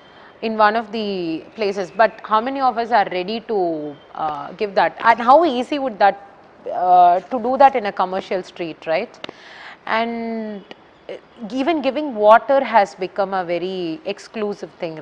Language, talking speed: Tamil, 160 wpm